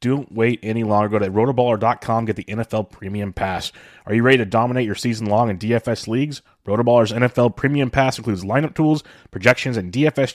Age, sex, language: 30-49, male, English